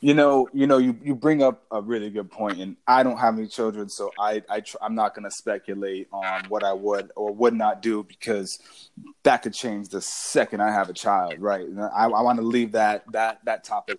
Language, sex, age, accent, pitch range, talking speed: English, male, 20-39, American, 110-130 Hz, 235 wpm